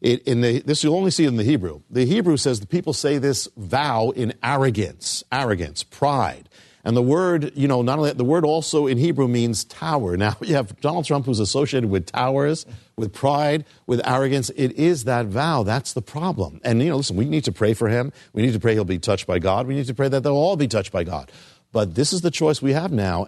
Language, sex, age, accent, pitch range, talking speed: English, male, 50-69, American, 105-140 Hz, 240 wpm